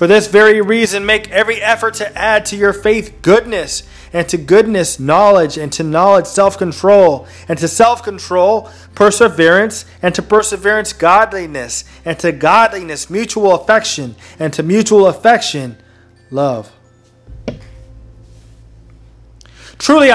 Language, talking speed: English, 120 wpm